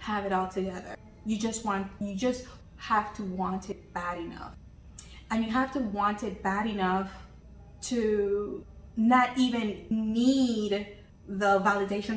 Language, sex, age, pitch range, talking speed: English, female, 20-39, 190-215 Hz, 145 wpm